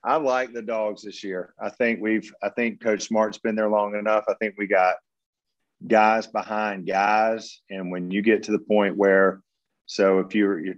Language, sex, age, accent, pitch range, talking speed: English, male, 40-59, American, 95-110 Hz, 210 wpm